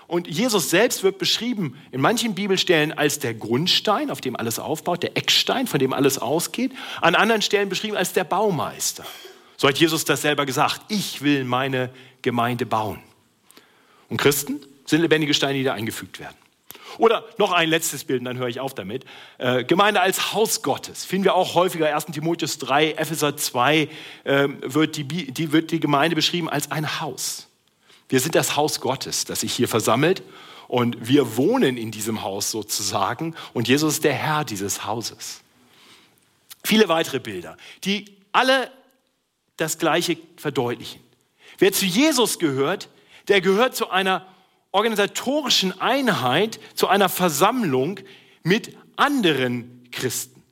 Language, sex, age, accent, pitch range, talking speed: German, male, 40-59, German, 135-195 Hz, 155 wpm